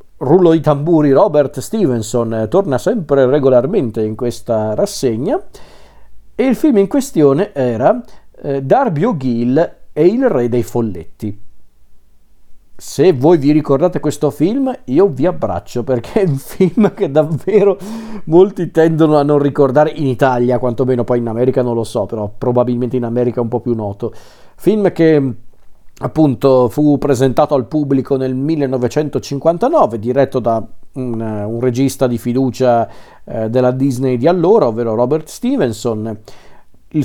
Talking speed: 145 wpm